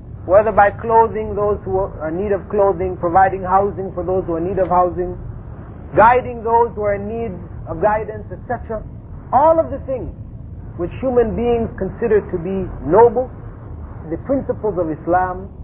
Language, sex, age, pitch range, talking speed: English, male, 30-49, 180-270 Hz, 170 wpm